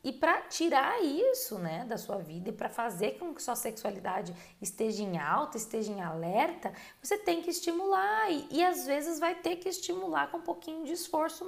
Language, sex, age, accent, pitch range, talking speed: Portuguese, female, 20-39, Brazilian, 195-330 Hz, 200 wpm